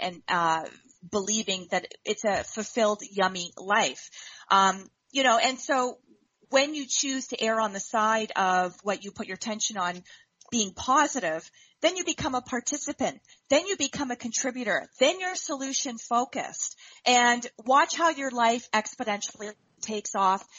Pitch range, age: 200-250 Hz, 30-49